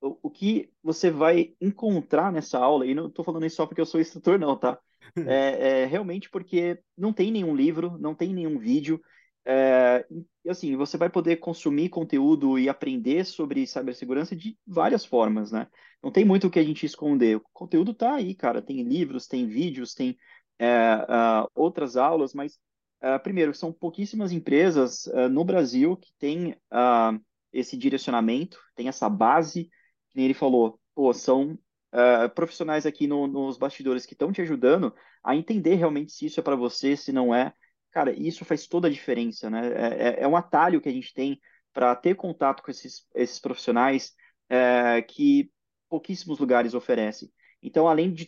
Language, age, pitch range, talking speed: Portuguese, 20-39, 130-185 Hz, 175 wpm